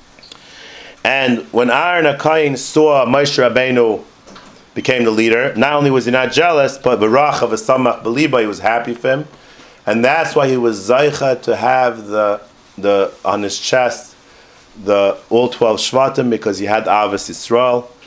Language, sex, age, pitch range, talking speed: English, male, 30-49, 115-145 Hz, 160 wpm